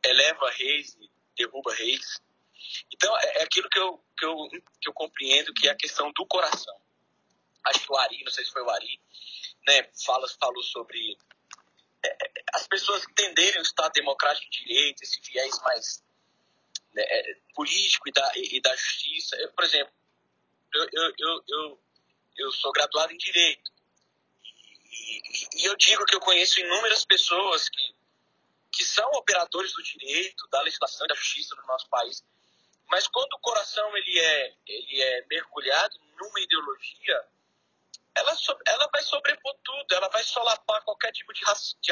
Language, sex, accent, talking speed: Portuguese, male, Brazilian, 165 wpm